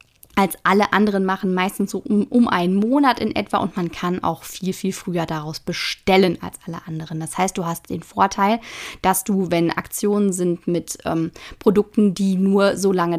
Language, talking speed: German, 185 wpm